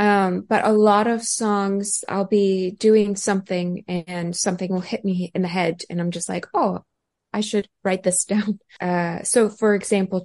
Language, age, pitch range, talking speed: English, 20-39, 175-200 Hz, 185 wpm